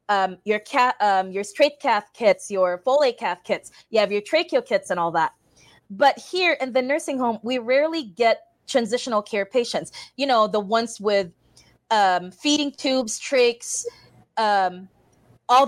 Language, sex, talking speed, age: English, female, 155 wpm, 20-39